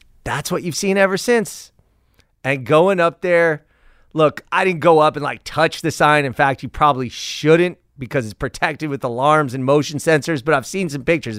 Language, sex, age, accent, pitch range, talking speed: English, male, 40-59, American, 130-195 Hz, 200 wpm